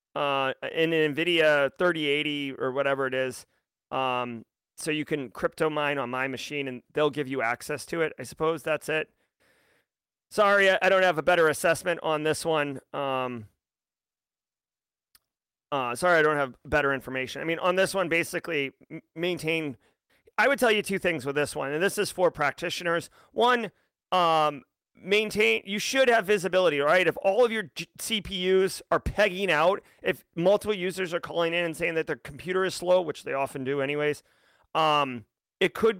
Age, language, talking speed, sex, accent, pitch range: 30-49, English, 175 wpm, male, American, 145-185 Hz